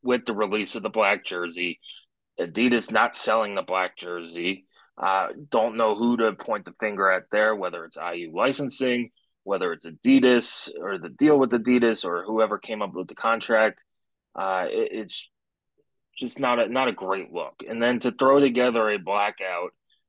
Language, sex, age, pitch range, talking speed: English, male, 30-49, 105-130 Hz, 175 wpm